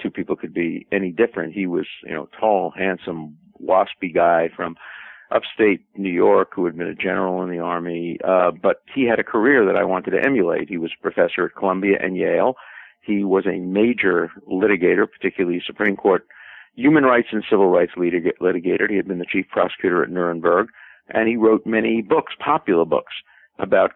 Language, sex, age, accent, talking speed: English, male, 50-69, American, 190 wpm